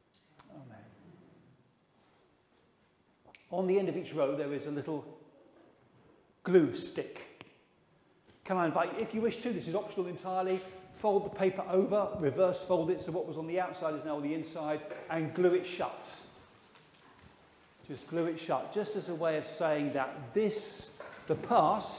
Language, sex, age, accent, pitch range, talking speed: English, male, 40-59, British, 155-195 Hz, 160 wpm